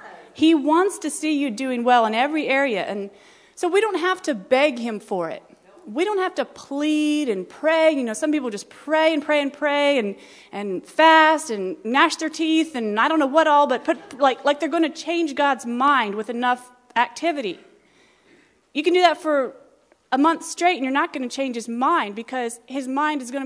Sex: female